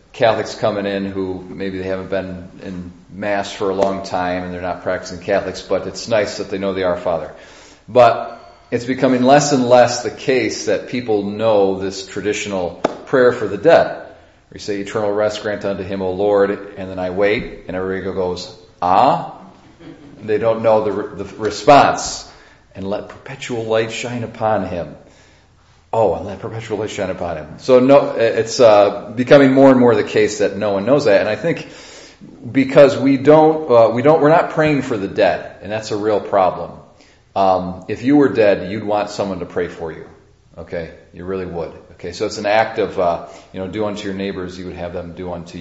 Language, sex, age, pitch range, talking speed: English, male, 40-59, 95-120 Hz, 205 wpm